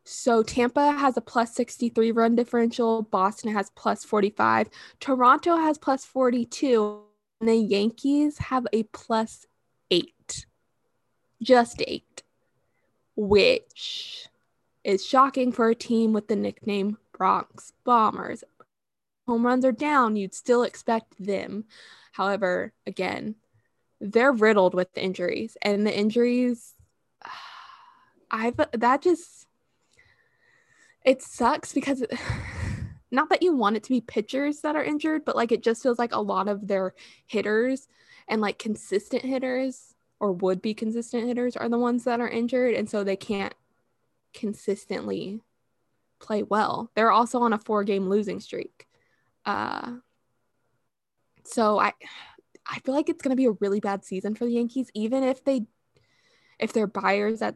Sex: female